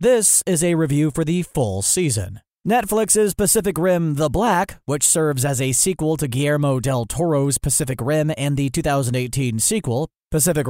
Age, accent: 30-49, American